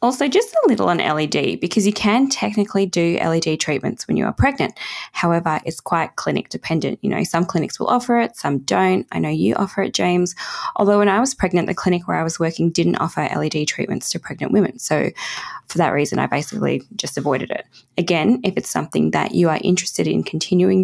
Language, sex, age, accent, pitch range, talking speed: English, female, 20-39, Australian, 170-210 Hz, 215 wpm